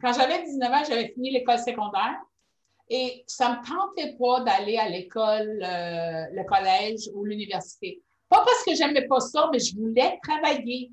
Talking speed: 180 wpm